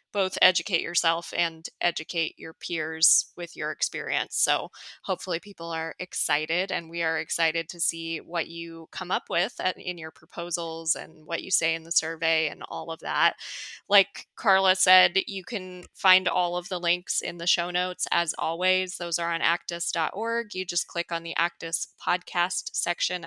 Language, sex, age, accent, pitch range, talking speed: English, female, 20-39, American, 170-205 Hz, 175 wpm